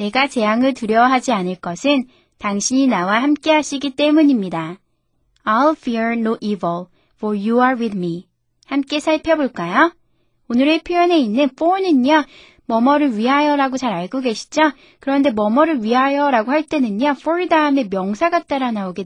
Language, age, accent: Korean, 20-39, native